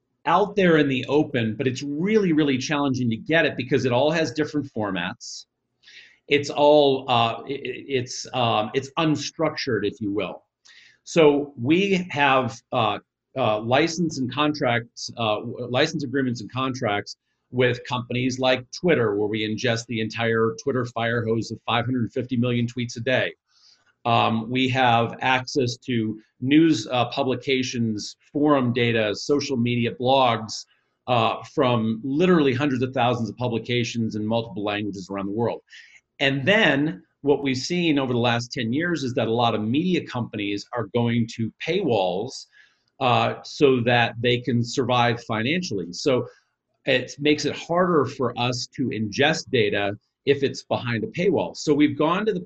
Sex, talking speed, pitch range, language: male, 155 wpm, 115-145 Hz, English